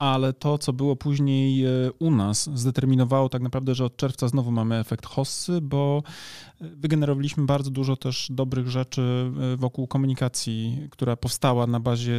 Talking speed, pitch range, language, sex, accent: 150 wpm, 125-145 Hz, Polish, male, native